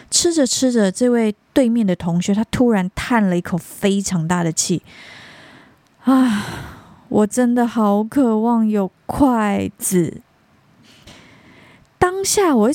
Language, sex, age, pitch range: Chinese, female, 20-39, 185-250 Hz